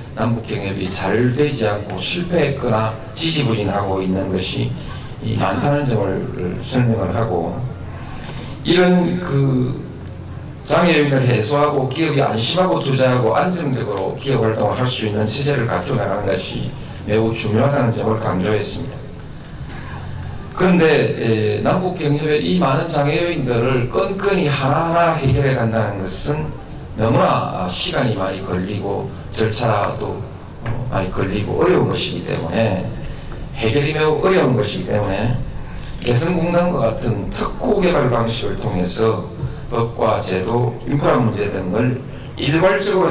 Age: 40-59